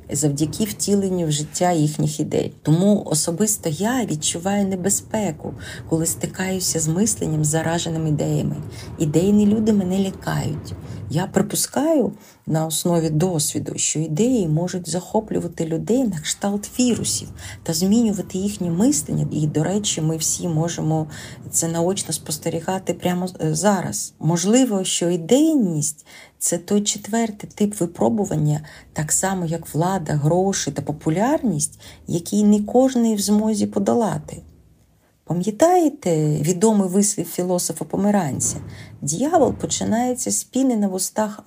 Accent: native